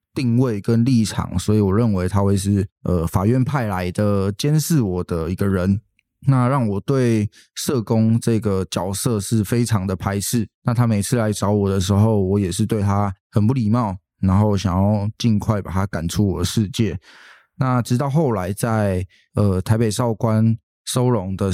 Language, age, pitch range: Chinese, 20-39, 95-115 Hz